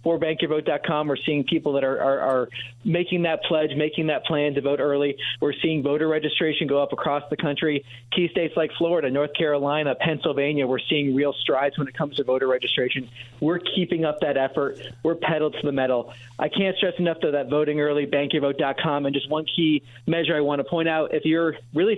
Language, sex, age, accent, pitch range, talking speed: English, male, 40-59, American, 135-165 Hz, 205 wpm